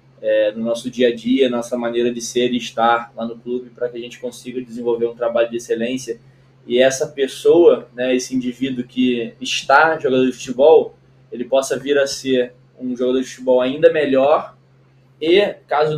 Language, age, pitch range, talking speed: Portuguese, 20-39, 120-135 Hz, 185 wpm